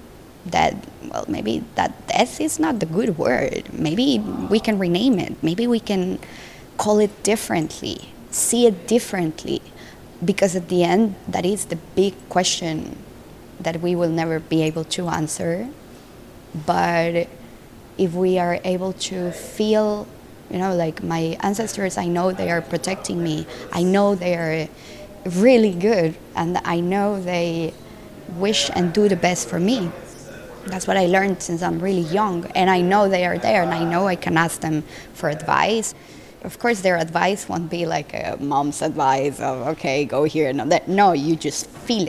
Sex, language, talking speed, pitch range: female, English, 170 wpm, 165-200 Hz